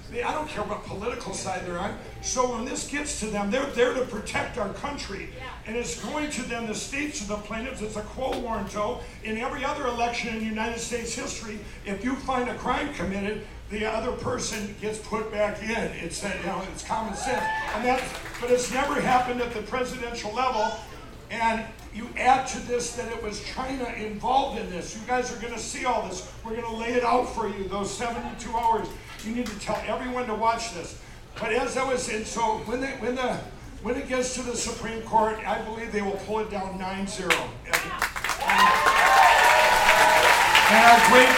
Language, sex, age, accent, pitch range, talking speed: English, male, 60-79, American, 215-250 Hz, 205 wpm